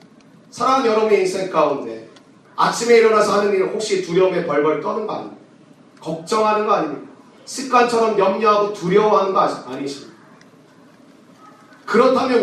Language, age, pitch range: Korean, 40-59, 185-230 Hz